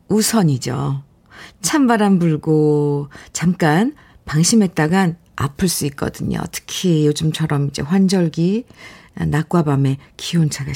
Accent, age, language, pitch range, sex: native, 50-69, Korean, 150-215 Hz, female